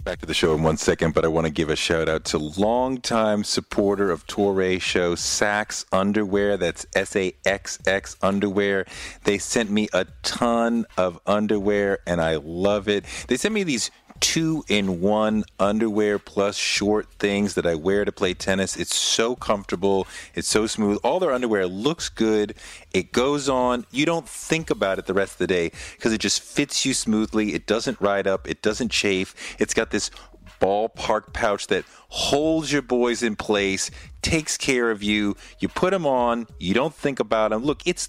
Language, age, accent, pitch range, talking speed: English, 40-59, American, 95-120 Hz, 180 wpm